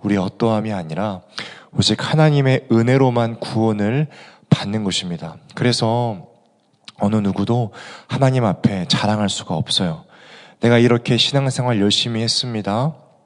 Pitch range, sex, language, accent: 100-135 Hz, male, Korean, native